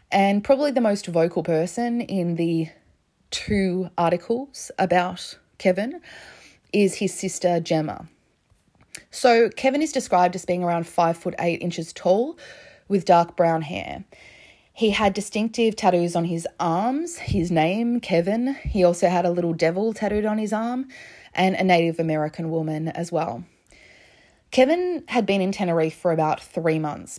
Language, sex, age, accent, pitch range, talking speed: English, female, 20-39, Australian, 165-205 Hz, 150 wpm